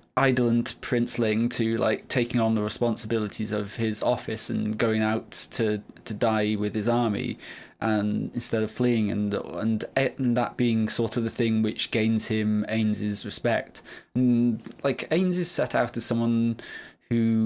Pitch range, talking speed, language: 110-120 Hz, 160 wpm, English